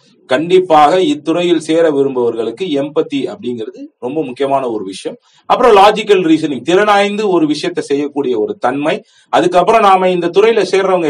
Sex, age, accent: male, 40-59, native